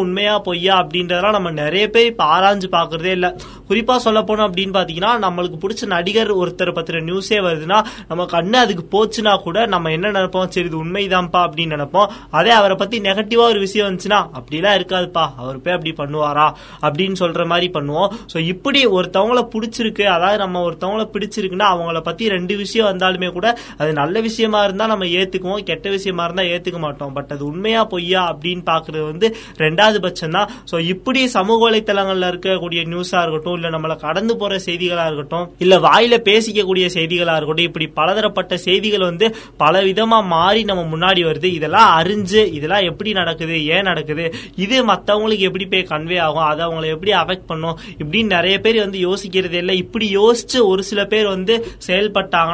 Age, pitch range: 20-39, 170-210 Hz